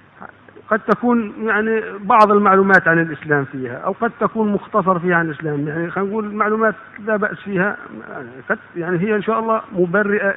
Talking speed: 175 wpm